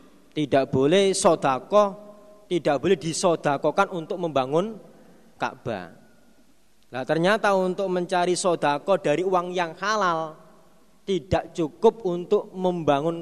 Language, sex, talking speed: Indonesian, male, 100 wpm